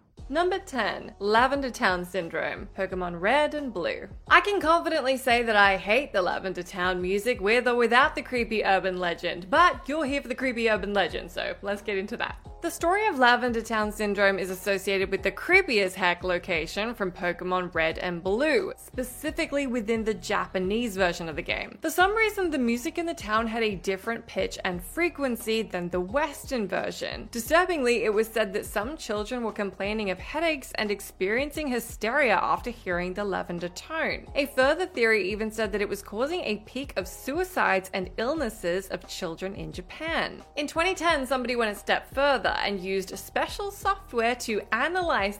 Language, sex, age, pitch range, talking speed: English, female, 20-39, 195-280 Hz, 180 wpm